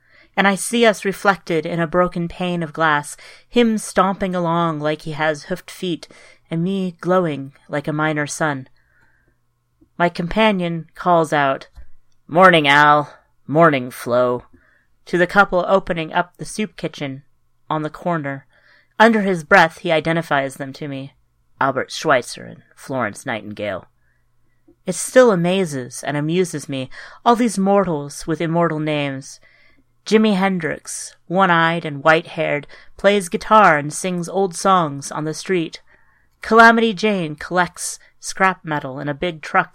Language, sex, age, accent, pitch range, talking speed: English, female, 30-49, American, 145-185 Hz, 140 wpm